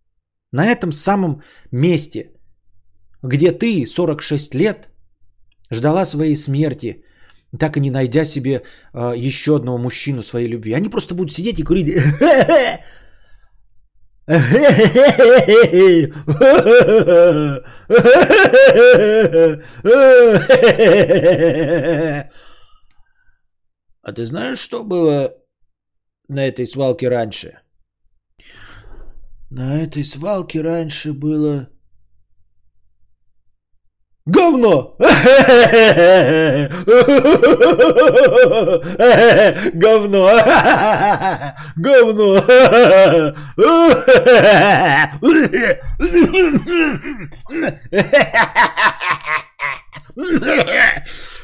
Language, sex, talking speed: Bulgarian, male, 55 wpm